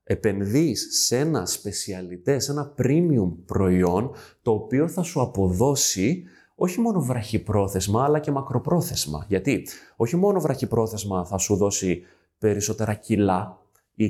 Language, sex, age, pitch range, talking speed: Greek, male, 20-39, 90-110 Hz, 125 wpm